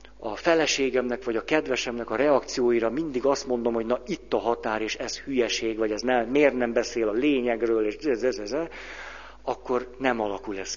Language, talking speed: Hungarian, 175 wpm